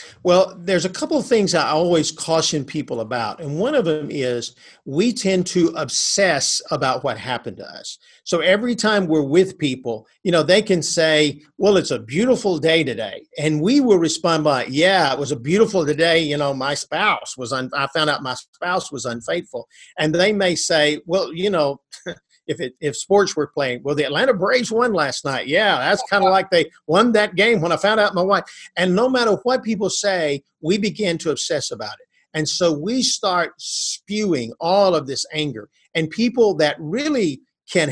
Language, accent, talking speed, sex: English, American, 200 wpm, male